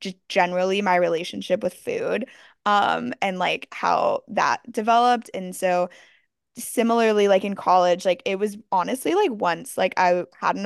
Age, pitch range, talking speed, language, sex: 10-29, 180-230 Hz, 160 wpm, English, female